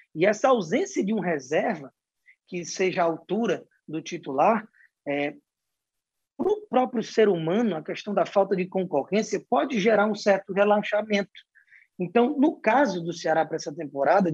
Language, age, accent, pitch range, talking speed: Portuguese, 20-39, Brazilian, 165-230 Hz, 155 wpm